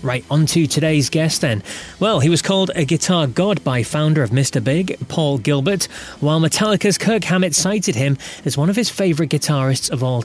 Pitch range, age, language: 130-175 Hz, 30-49, English